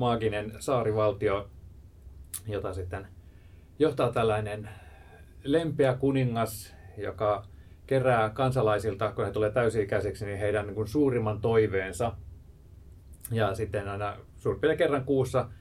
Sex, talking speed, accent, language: male, 100 wpm, native, Finnish